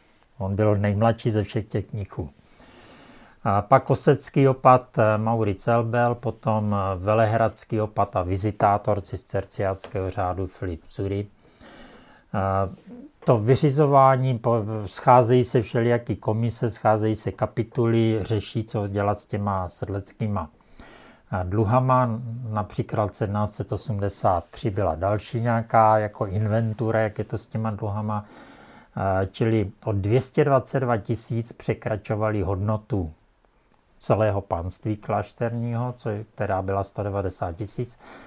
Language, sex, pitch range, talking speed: Czech, male, 100-120 Hz, 100 wpm